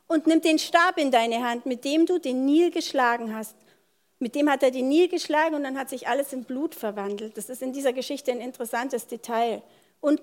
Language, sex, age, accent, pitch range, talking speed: German, female, 40-59, German, 230-315 Hz, 225 wpm